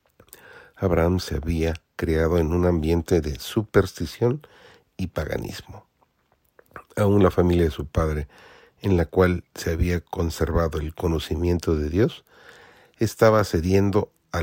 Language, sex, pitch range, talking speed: Spanish, male, 80-100 Hz, 125 wpm